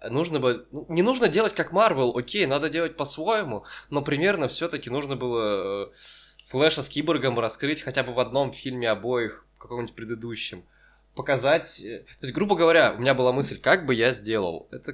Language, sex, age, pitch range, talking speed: Russian, male, 20-39, 120-145 Hz, 175 wpm